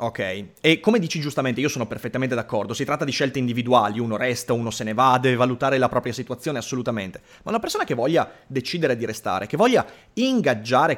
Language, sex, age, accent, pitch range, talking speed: Italian, male, 30-49, native, 120-165 Hz, 200 wpm